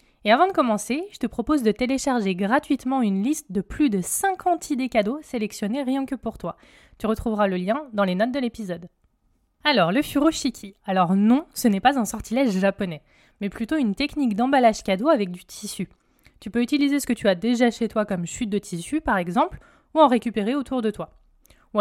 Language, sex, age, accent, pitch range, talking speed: French, female, 20-39, French, 200-270 Hz, 205 wpm